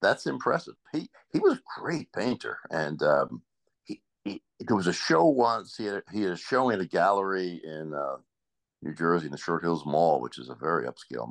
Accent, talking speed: American, 210 wpm